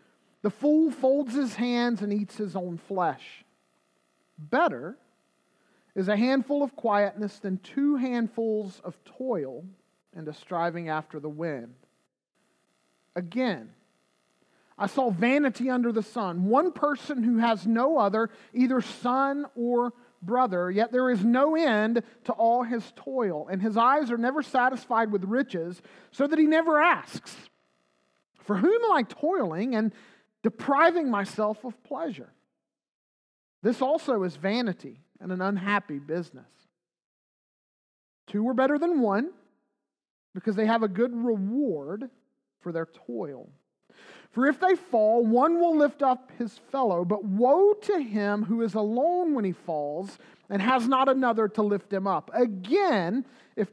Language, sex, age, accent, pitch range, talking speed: English, male, 40-59, American, 190-260 Hz, 145 wpm